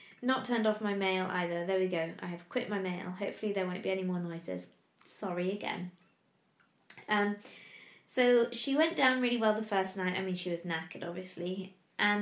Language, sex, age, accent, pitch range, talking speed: English, female, 20-39, British, 185-225 Hz, 195 wpm